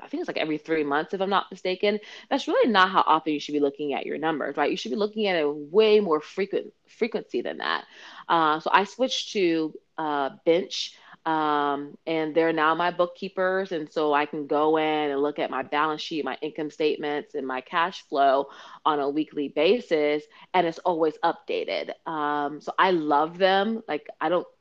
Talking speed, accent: 200 wpm, American